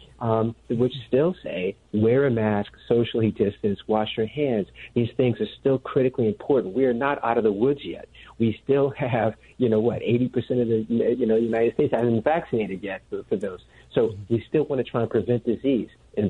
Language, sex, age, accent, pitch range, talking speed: English, male, 50-69, American, 110-135 Hz, 205 wpm